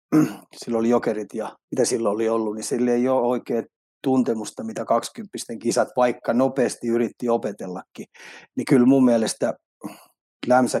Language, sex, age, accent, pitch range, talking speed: Finnish, male, 30-49, native, 110-125 Hz, 145 wpm